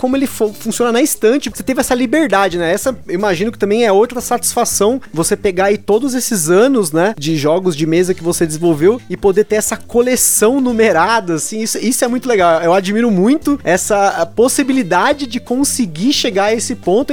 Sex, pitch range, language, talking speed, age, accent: male, 185-245 Hz, Portuguese, 195 wpm, 30-49, Brazilian